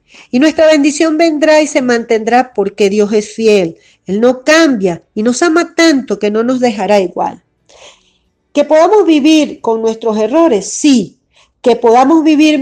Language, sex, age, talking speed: Spanish, female, 40-59, 155 wpm